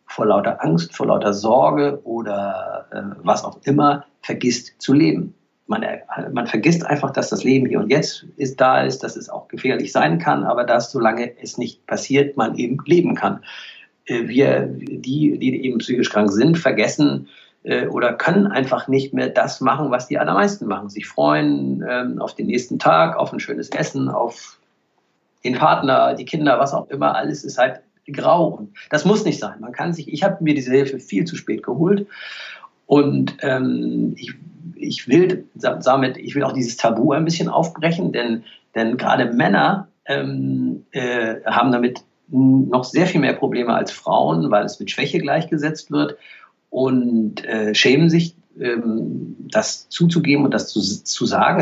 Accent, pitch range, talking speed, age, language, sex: German, 105-150 Hz, 175 wpm, 50-69, German, male